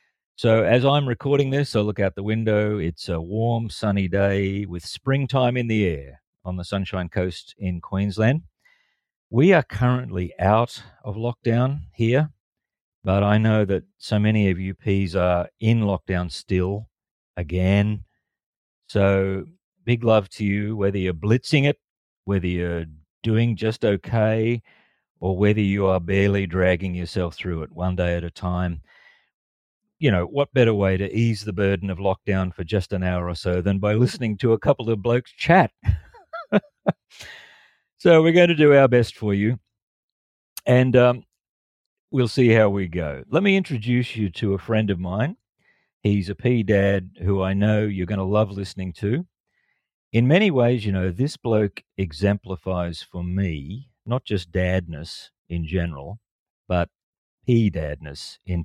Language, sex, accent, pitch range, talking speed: English, male, Australian, 95-115 Hz, 160 wpm